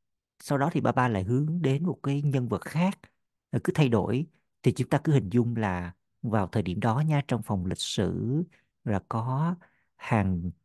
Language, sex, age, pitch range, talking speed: Vietnamese, male, 50-69, 105-140 Hz, 195 wpm